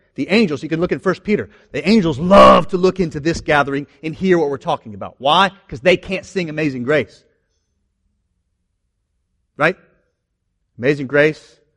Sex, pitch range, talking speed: male, 140-210 Hz, 165 wpm